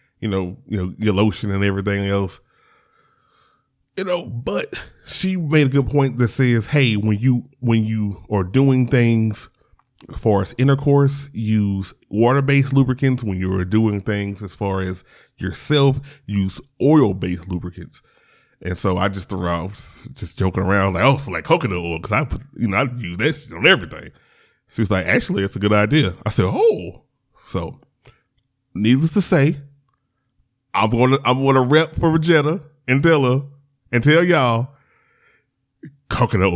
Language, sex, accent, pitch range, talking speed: English, male, American, 100-140 Hz, 170 wpm